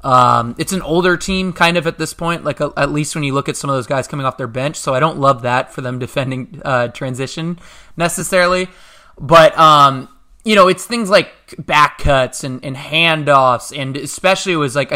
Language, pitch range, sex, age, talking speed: English, 140-180 Hz, male, 20-39, 215 wpm